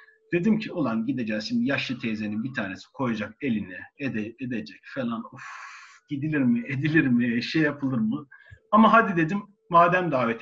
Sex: male